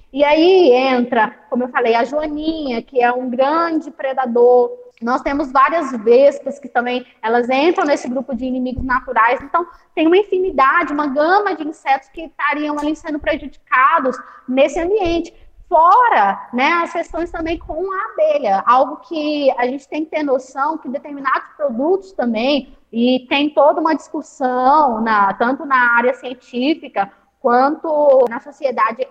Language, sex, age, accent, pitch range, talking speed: Portuguese, female, 20-39, Brazilian, 255-330 Hz, 150 wpm